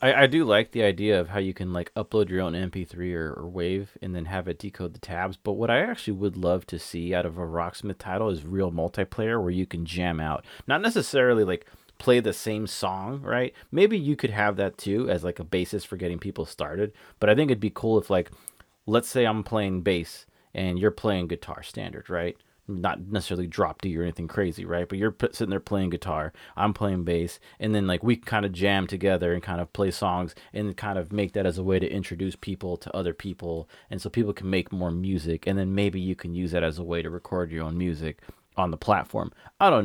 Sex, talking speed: male, 240 wpm